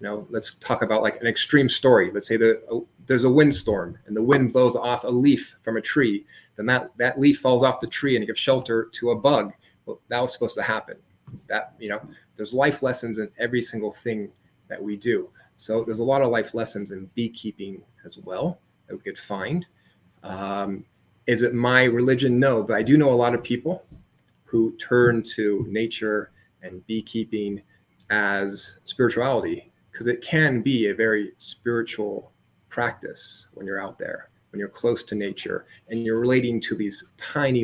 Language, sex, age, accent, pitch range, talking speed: English, male, 30-49, American, 105-125 Hz, 190 wpm